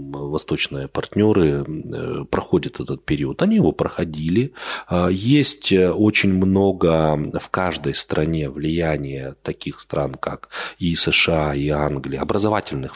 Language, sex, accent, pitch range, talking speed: Russian, male, native, 75-100 Hz, 105 wpm